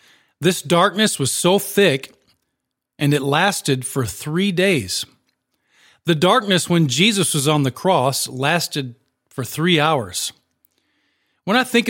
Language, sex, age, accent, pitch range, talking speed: English, male, 40-59, American, 135-185 Hz, 130 wpm